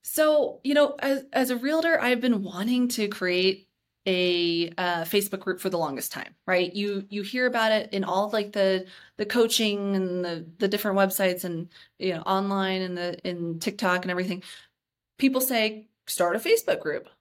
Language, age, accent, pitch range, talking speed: English, 30-49, American, 180-230 Hz, 185 wpm